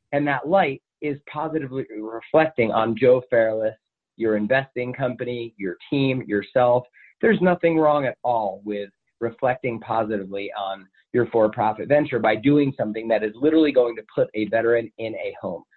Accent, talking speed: American, 155 wpm